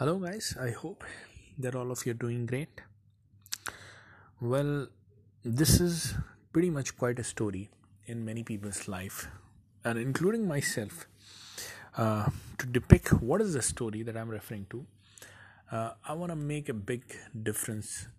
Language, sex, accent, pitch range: English, male, Indian, 105-135 Hz